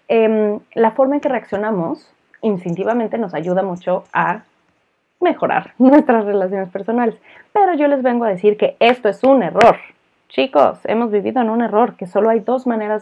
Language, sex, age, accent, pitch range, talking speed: Spanish, female, 30-49, Mexican, 180-235 Hz, 170 wpm